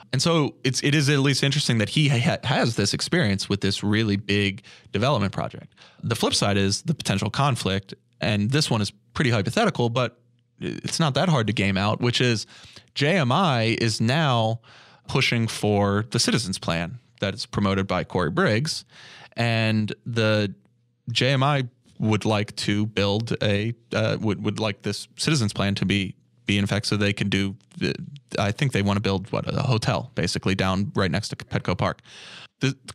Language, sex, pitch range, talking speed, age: English, male, 105-125 Hz, 180 wpm, 20-39